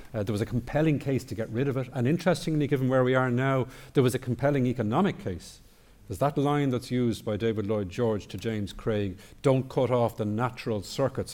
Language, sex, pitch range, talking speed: English, male, 110-140 Hz, 220 wpm